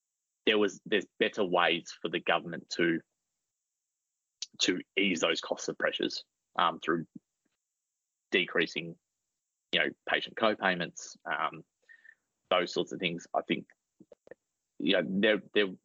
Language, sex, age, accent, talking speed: English, male, 30-49, Australian, 125 wpm